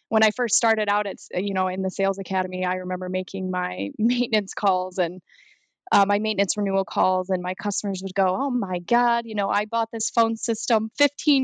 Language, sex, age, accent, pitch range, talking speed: English, female, 20-39, American, 190-225 Hz, 210 wpm